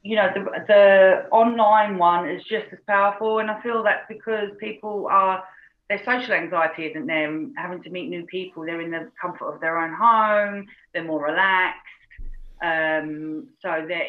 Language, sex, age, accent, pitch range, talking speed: English, female, 40-59, British, 150-195 Hz, 175 wpm